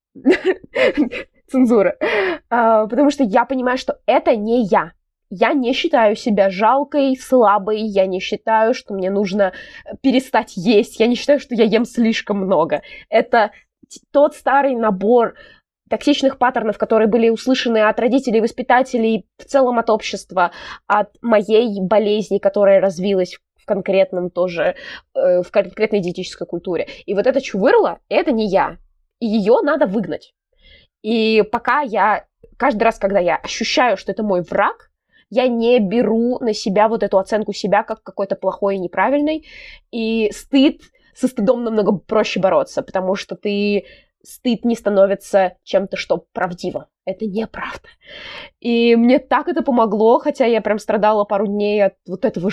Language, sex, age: Russian, female, 20-39